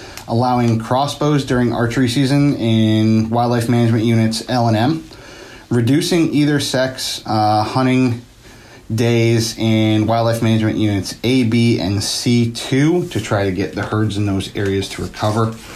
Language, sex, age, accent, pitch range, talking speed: English, male, 30-49, American, 105-125 Hz, 135 wpm